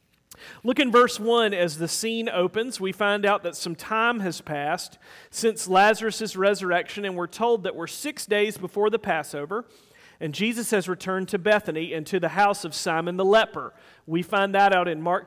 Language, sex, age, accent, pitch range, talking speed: English, male, 40-59, American, 170-215 Hz, 195 wpm